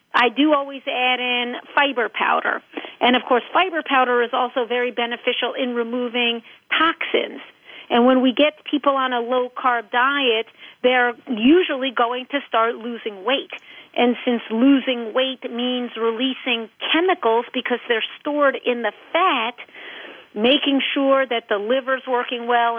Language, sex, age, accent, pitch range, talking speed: English, female, 40-59, American, 230-265 Hz, 145 wpm